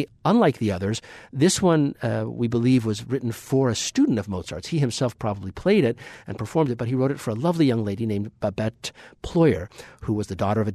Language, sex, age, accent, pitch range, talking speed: English, male, 50-69, American, 100-130 Hz, 230 wpm